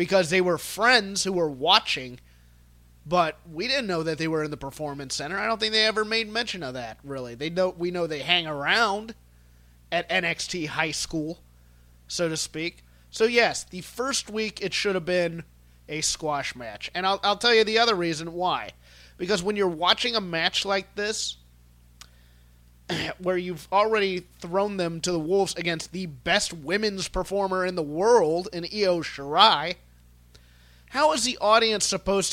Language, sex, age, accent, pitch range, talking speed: English, male, 30-49, American, 140-195 Hz, 175 wpm